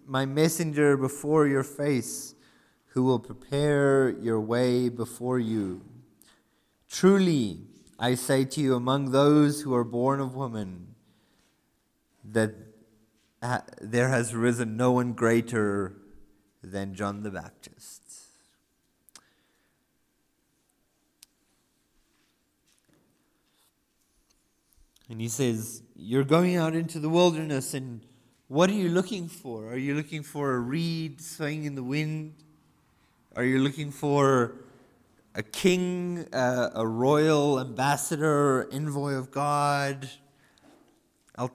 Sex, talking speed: male, 110 wpm